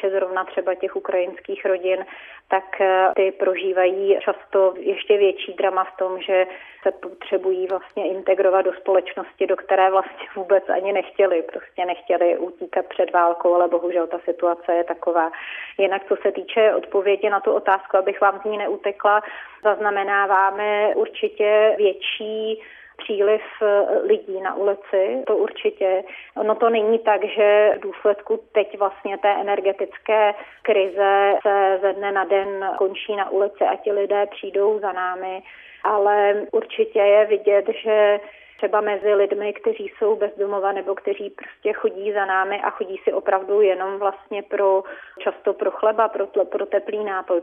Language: Czech